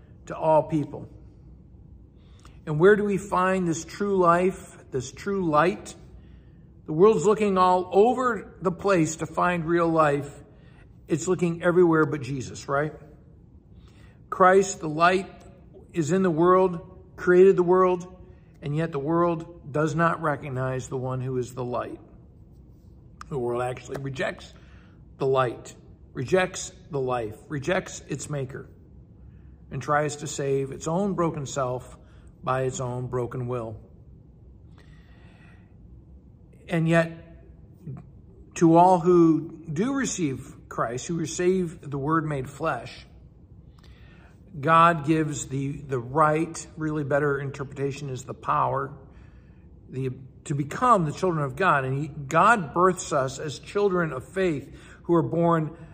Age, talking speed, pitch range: 60-79, 130 wpm, 135-175 Hz